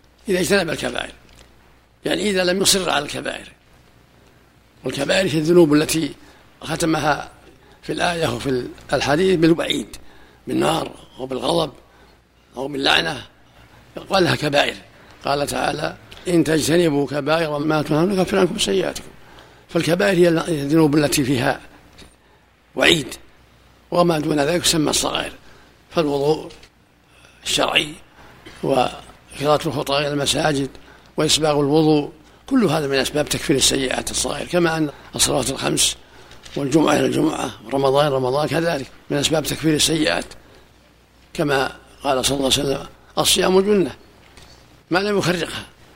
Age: 60-79